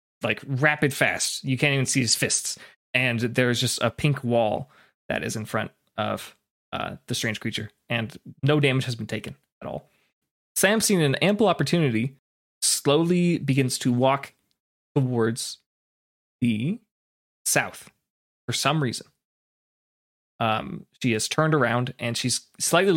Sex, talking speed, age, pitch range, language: male, 145 wpm, 20-39, 110-140 Hz, English